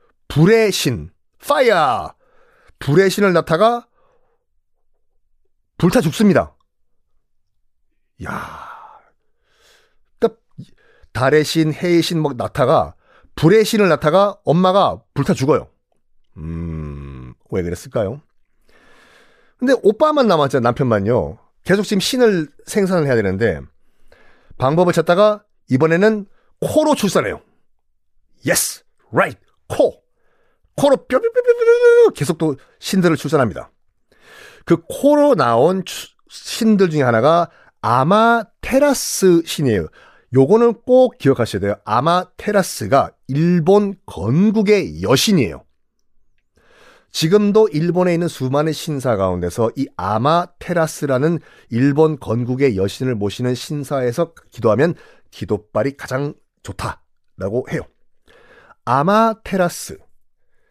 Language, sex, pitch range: Korean, male, 130-220 Hz